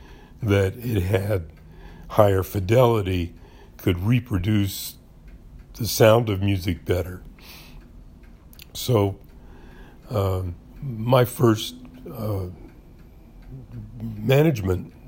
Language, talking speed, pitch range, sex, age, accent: English, 70 wpm, 90-115 Hz, male, 60-79, American